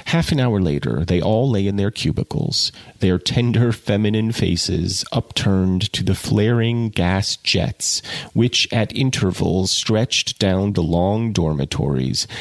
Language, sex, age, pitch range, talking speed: English, male, 30-49, 95-120 Hz, 135 wpm